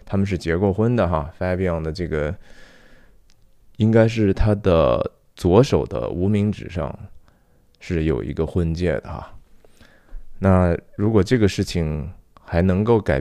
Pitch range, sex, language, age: 80-100 Hz, male, Chinese, 20-39